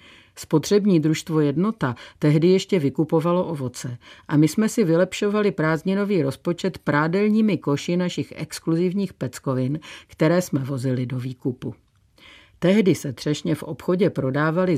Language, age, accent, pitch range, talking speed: Czech, 50-69, native, 135-190 Hz, 120 wpm